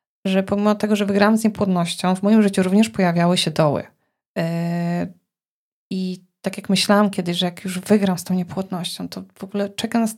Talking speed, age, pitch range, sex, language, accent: 190 wpm, 20-39, 180-215 Hz, female, Polish, native